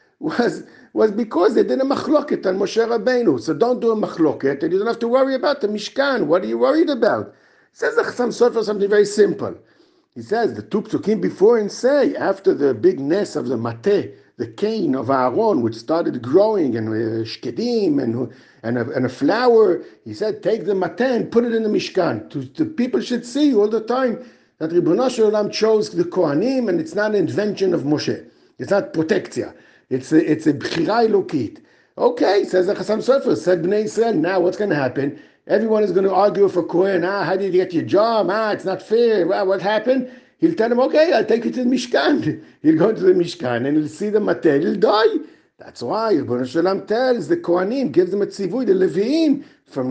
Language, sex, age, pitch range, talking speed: English, male, 60-79, 195-275 Hz, 210 wpm